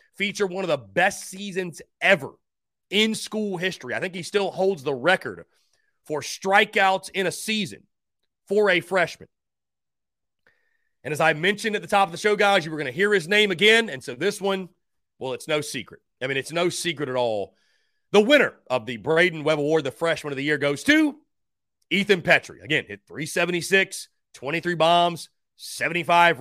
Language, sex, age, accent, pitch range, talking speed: English, male, 30-49, American, 155-210 Hz, 185 wpm